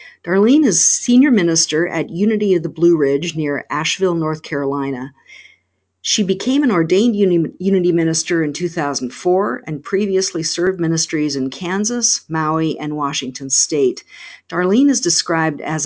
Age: 50-69